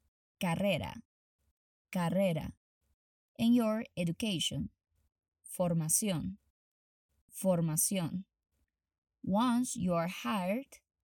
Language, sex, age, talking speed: English, female, 20-39, 60 wpm